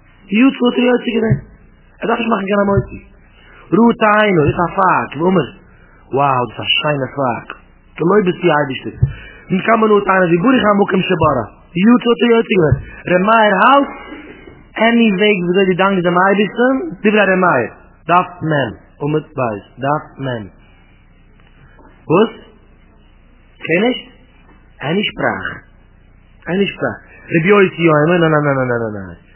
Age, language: 30-49, English